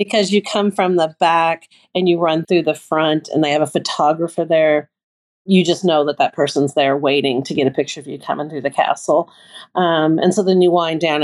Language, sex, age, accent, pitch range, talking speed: English, female, 40-59, American, 165-195 Hz, 230 wpm